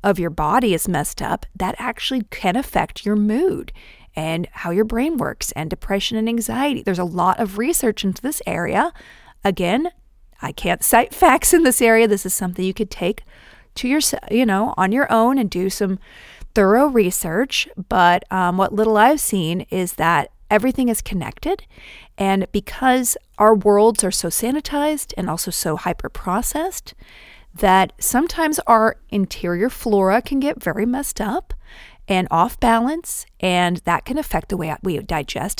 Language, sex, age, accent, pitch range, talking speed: English, female, 40-59, American, 180-240 Hz, 165 wpm